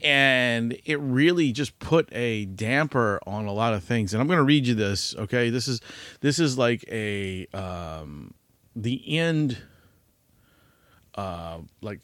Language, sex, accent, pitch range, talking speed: English, male, American, 100-130 Hz, 150 wpm